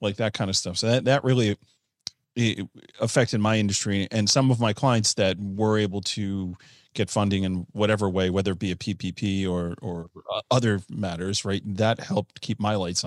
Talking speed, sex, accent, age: 190 wpm, male, American, 30-49